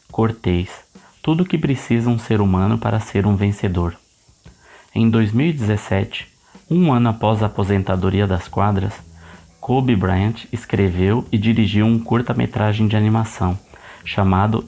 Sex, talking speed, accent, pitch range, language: male, 125 wpm, Brazilian, 100-120 Hz, Portuguese